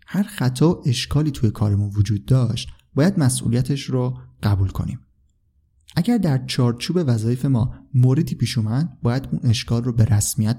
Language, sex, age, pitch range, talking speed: Persian, male, 30-49, 110-145 Hz, 145 wpm